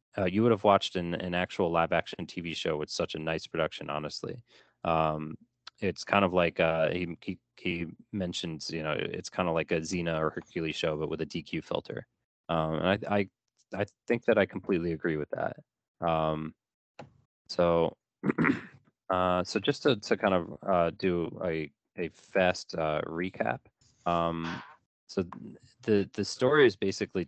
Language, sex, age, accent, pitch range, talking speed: English, male, 20-39, American, 80-90 Hz, 170 wpm